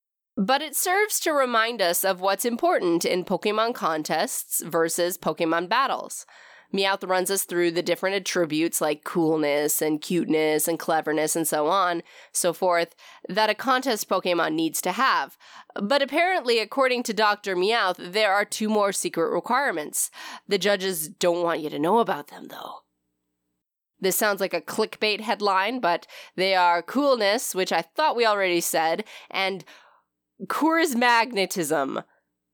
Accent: American